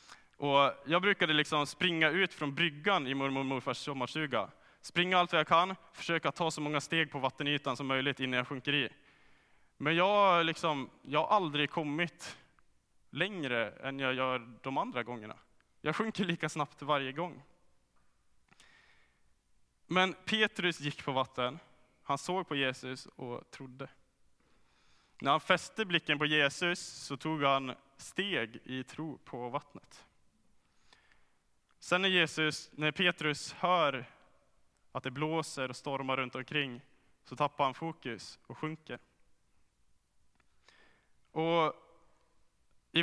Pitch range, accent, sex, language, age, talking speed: 130-160 Hz, Norwegian, male, Swedish, 20-39, 130 wpm